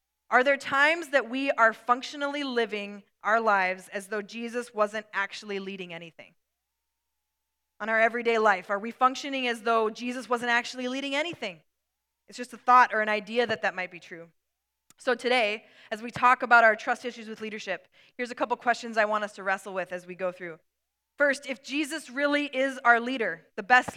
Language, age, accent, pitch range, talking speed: English, 20-39, American, 210-260 Hz, 195 wpm